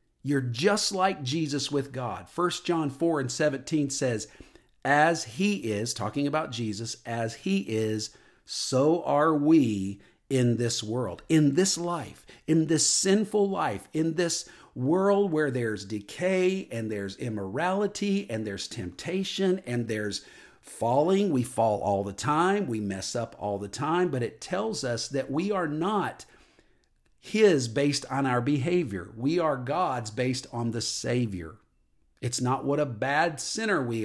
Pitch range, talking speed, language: 110-160 Hz, 155 wpm, English